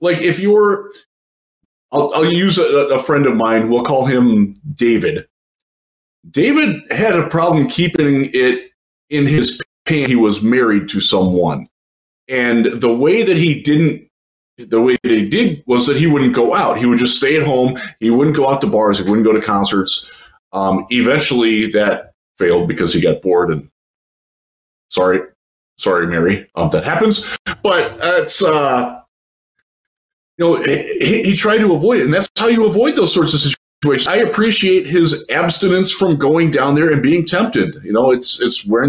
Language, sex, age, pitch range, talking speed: English, male, 20-39, 120-185 Hz, 175 wpm